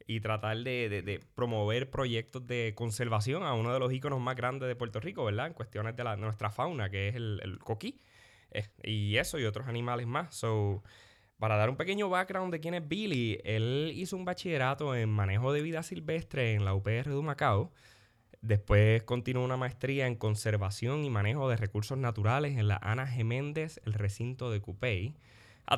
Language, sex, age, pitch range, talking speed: English, male, 10-29, 110-135 Hz, 195 wpm